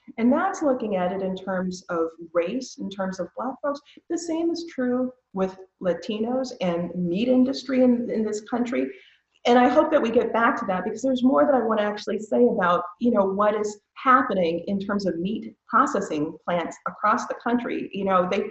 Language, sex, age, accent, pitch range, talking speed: English, female, 40-59, American, 175-245 Hz, 205 wpm